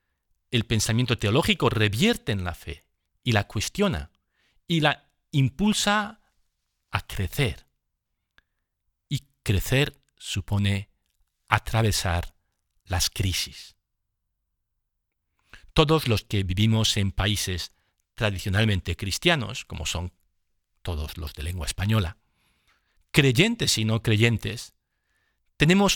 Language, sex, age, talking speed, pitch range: Spanish, male, 50-69, 95 wpm, 90-115 Hz